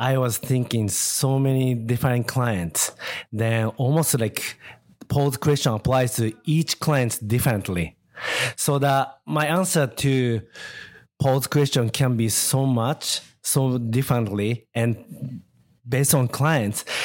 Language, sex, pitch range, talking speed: English, male, 110-140 Hz, 120 wpm